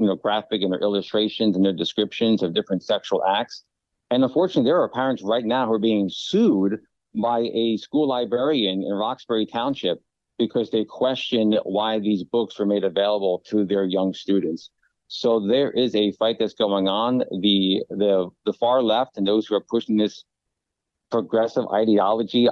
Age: 50-69